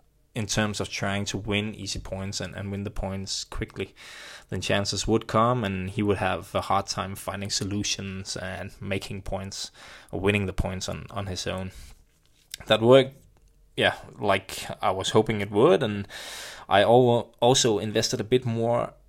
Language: English